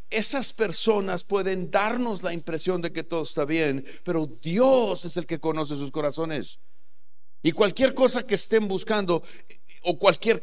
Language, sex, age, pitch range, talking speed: Spanish, male, 50-69, 140-175 Hz, 155 wpm